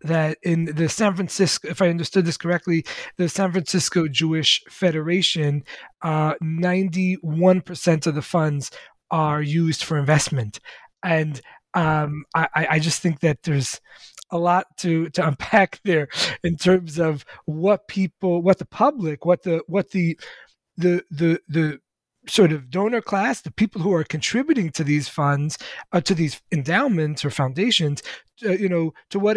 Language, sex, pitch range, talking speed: English, male, 150-180 Hz, 150 wpm